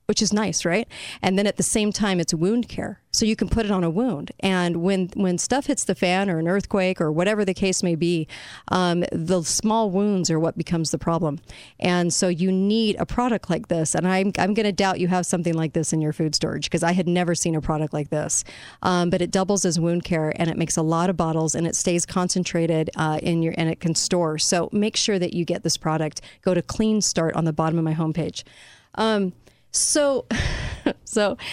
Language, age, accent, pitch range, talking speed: English, 40-59, American, 165-200 Hz, 235 wpm